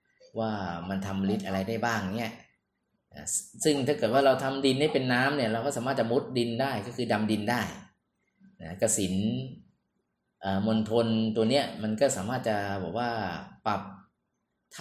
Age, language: 20-39, Thai